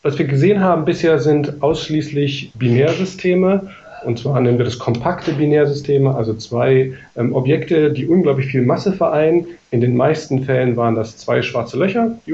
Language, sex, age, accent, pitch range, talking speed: German, male, 40-59, German, 125-150 Hz, 165 wpm